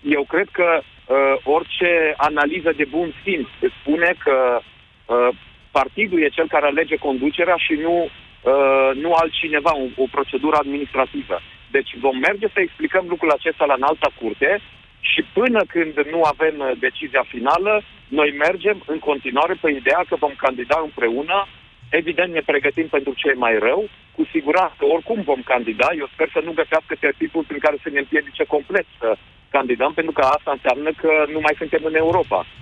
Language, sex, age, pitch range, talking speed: Romanian, male, 40-59, 140-180 Hz, 170 wpm